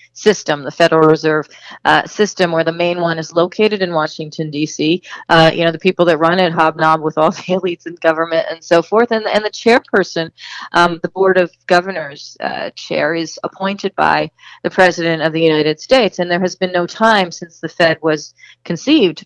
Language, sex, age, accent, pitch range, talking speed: English, female, 40-59, American, 165-200 Hz, 195 wpm